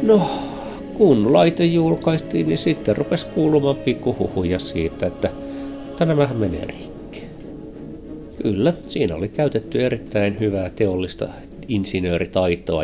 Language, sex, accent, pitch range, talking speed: Finnish, male, native, 95-125 Hz, 105 wpm